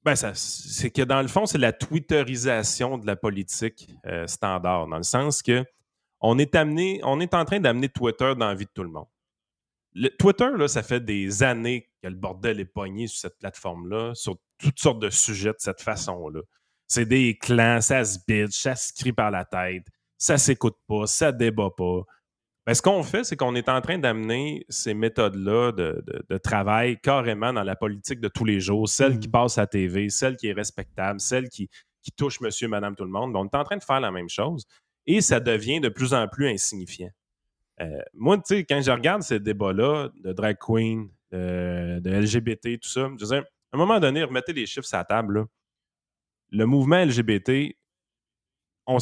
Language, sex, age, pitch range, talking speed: French, male, 30-49, 100-135 Hz, 210 wpm